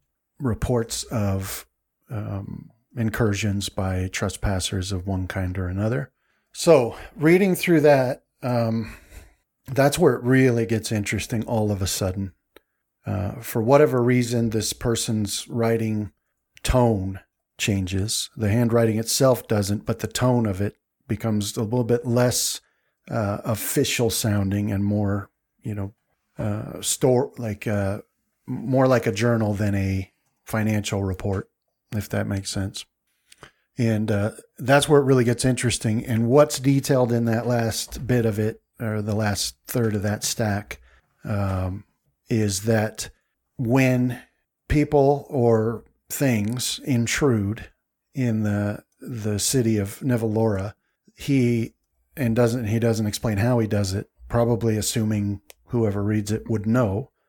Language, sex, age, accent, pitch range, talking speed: English, male, 50-69, American, 100-120 Hz, 135 wpm